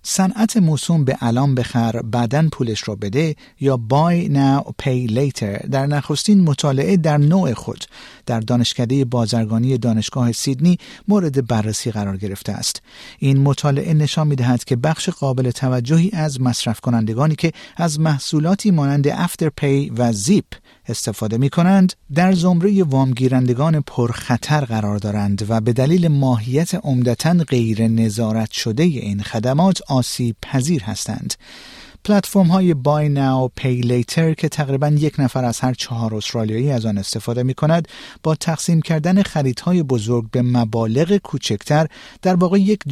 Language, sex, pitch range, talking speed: Persian, male, 120-160 Hz, 140 wpm